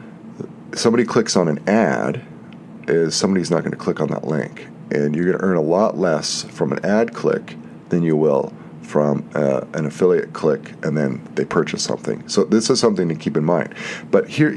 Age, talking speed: 40-59, 200 wpm